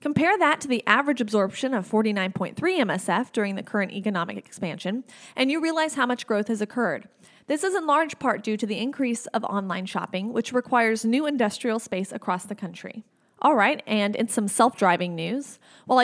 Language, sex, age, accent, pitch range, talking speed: English, female, 30-49, American, 195-250 Hz, 185 wpm